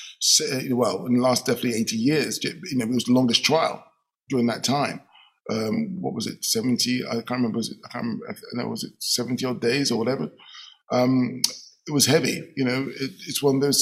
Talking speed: 215 wpm